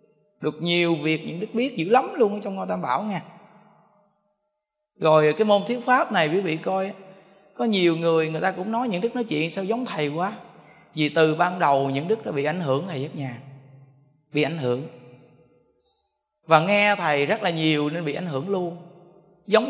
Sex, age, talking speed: male, 20-39, 200 wpm